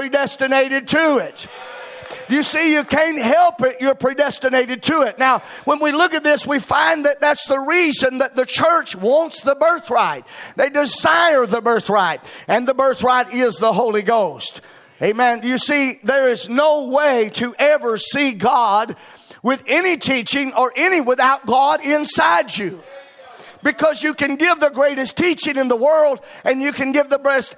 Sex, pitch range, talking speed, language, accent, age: male, 255-300 Hz, 170 wpm, English, American, 40-59